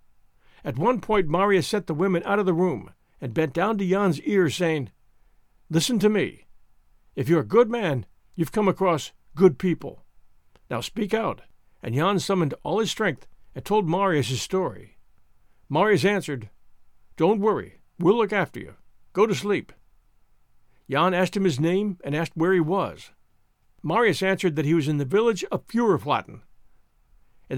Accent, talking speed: American, 170 wpm